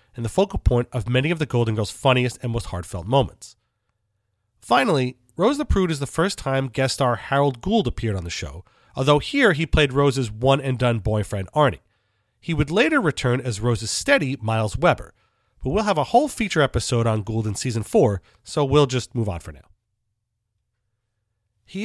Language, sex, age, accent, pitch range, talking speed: English, male, 30-49, American, 105-145 Hz, 185 wpm